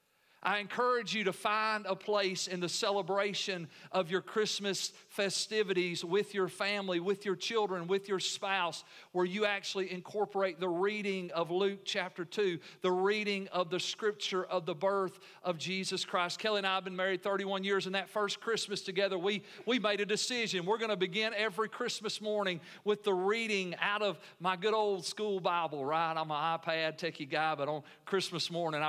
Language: English